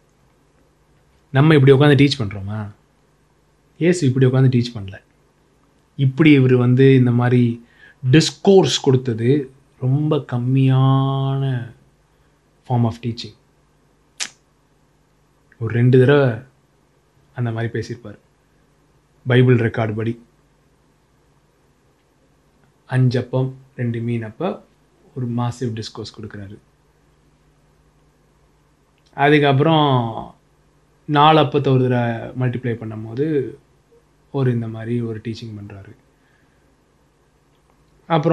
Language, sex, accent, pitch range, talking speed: English, male, Indian, 120-150 Hz, 40 wpm